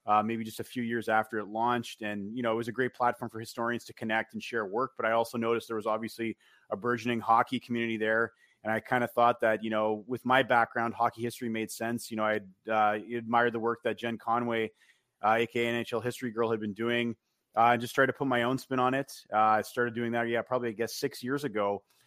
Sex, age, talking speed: male, 30-49, 250 wpm